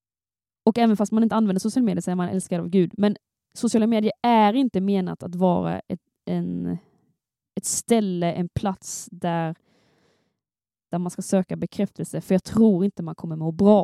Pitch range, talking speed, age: 185-220 Hz, 180 wpm, 20-39